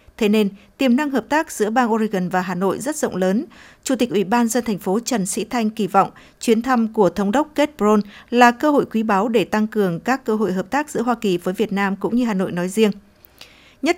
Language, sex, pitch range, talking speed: Vietnamese, female, 200-245 Hz, 260 wpm